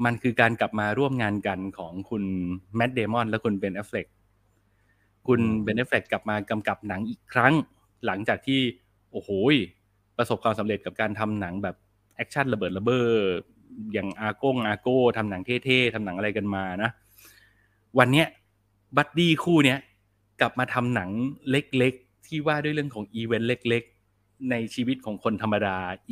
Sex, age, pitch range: male, 20-39, 100-125 Hz